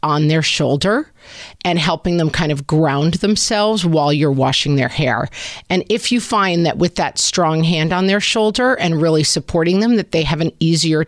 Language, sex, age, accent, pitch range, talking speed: English, female, 40-59, American, 145-180 Hz, 195 wpm